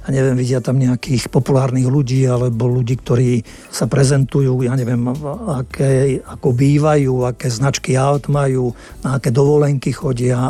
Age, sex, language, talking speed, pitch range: 50-69, male, Slovak, 150 wpm, 130-155 Hz